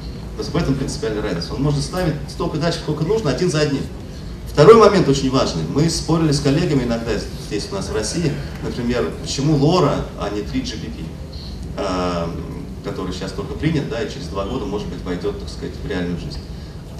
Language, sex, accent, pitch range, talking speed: Russian, male, native, 90-150 Hz, 185 wpm